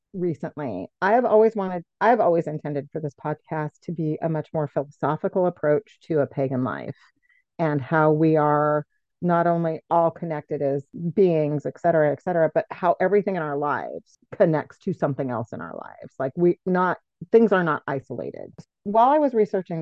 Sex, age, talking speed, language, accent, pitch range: female, 40-59, 180 wpm, English, American, 145-180 Hz